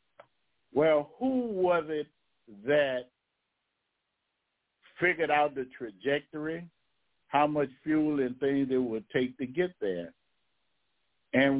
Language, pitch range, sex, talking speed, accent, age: English, 130-150 Hz, male, 110 wpm, American, 60-79